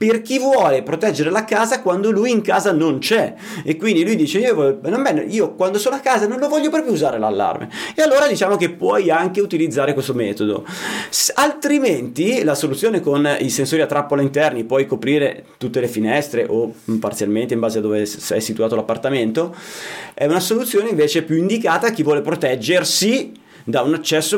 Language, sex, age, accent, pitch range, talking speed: Italian, male, 30-49, native, 120-170 Hz, 180 wpm